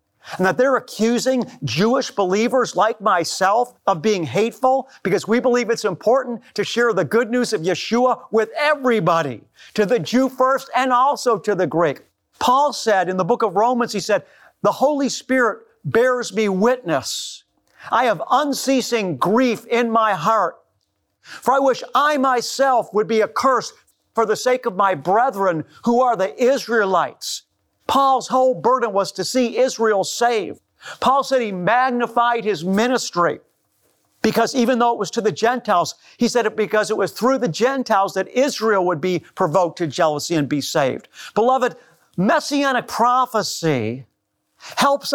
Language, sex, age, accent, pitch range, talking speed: English, male, 50-69, American, 200-255 Hz, 160 wpm